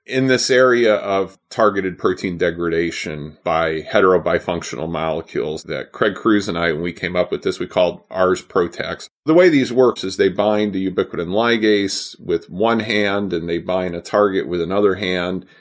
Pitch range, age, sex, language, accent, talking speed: 90-130 Hz, 30-49, male, English, American, 175 wpm